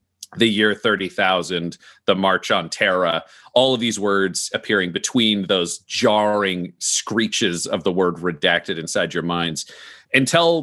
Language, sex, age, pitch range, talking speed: English, male, 40-59, 105-130 Hz, 135 wpm